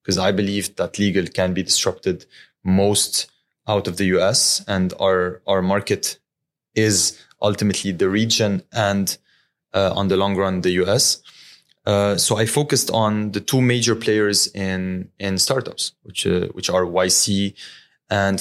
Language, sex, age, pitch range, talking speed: English, male, 20-39, 95-110 Hz, 155 wpm